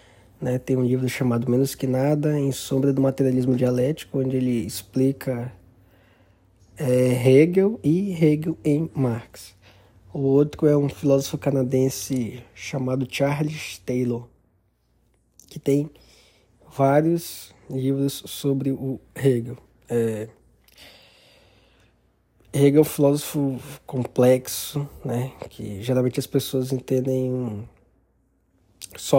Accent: Brazilian